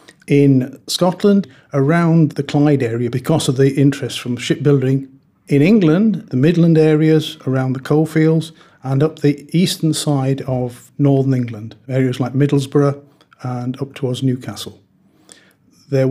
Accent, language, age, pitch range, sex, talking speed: British, English, 50-69, 120-145 Hz, male, 135 wpm